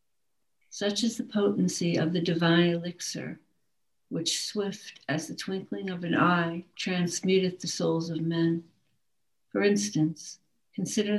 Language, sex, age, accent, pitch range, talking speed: English, female, 60-79, American, 165-190 Hz, 130 wpm